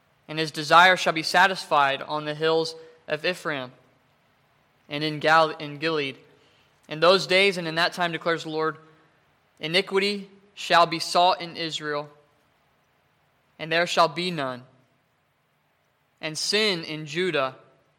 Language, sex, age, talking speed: English, male, 20-39, 130 wpm